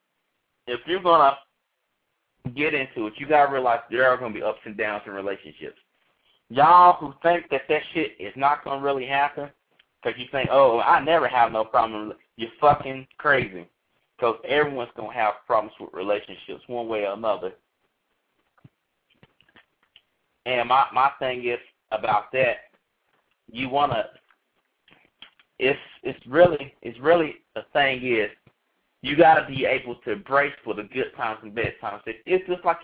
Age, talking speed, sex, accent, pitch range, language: 30-49, 170 wpm, male, American, 120-160 Hz, English